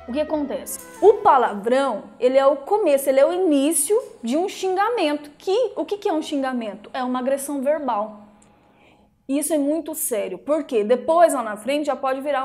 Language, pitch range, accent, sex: Portuguese, 260-330 Hz, Brazilian, female